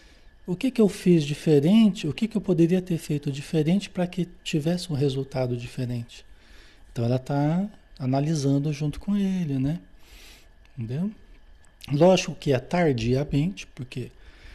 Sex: male